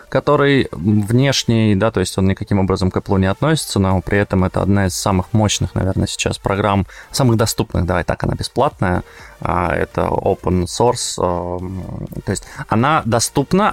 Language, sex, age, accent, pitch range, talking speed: Russian, male, 20-39, native, 100-130 Hz, 155 wpm